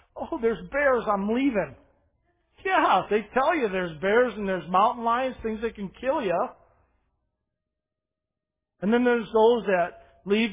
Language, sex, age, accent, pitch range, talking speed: English, male, 40-59, American, 165-220 Hz, 150 wpm